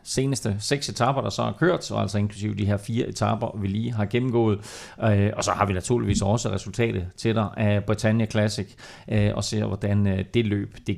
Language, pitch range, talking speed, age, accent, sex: Danish, 105-135 Hz, 195 wpm, 30-49, native, male